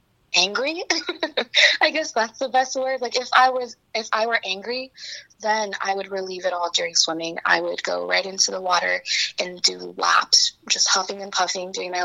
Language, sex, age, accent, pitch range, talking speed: English, female, 20-39, American, 180-230 Hz, 195 wpm